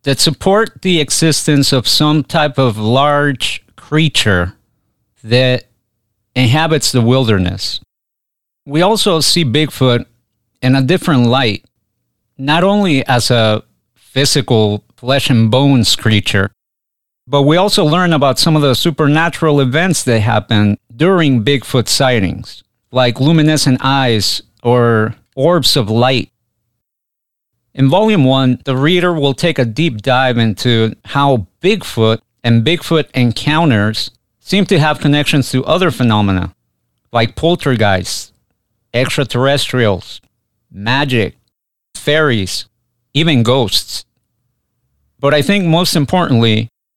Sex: male